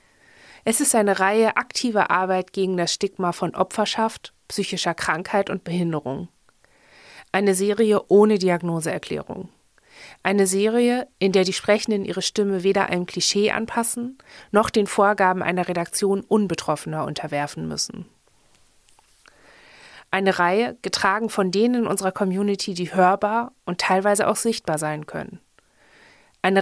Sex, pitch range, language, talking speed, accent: female, 175-210 Hz, German, 125 wpm, German